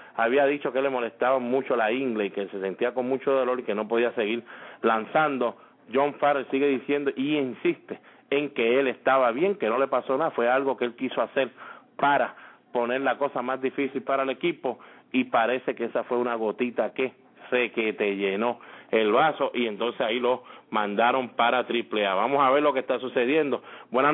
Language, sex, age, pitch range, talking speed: English, male, 30-49, 125-140 Hz, 200 wpm